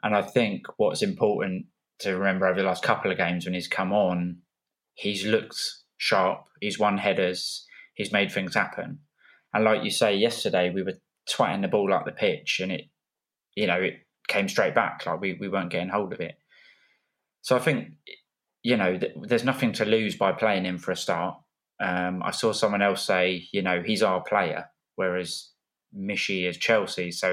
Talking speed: 190 wpm